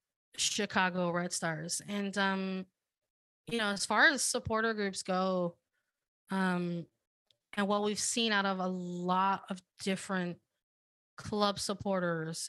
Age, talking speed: 20-39, 125 wpm